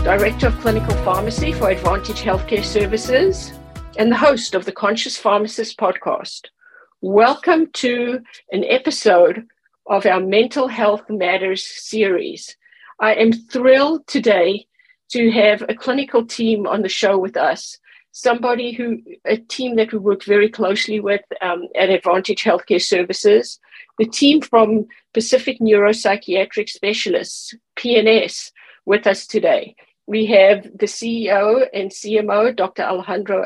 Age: 50-69